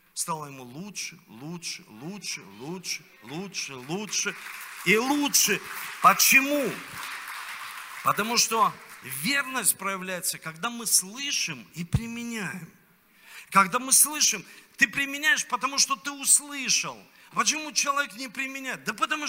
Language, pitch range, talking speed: Russian, 195-275 Hz, 110 wpm